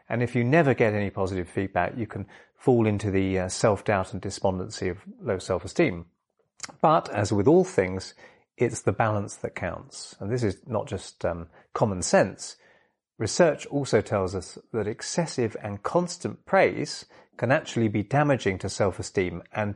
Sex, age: male, 30-49